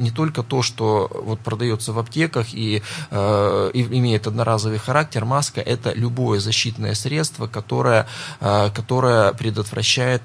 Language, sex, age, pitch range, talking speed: Russian, male, 20-39, 110-125 Hz, 135 wpm